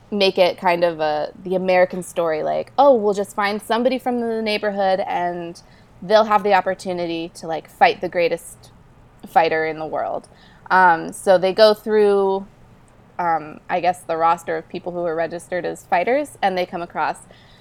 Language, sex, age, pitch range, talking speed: English, female, 20-39, 170-210 Hz, 175 wpm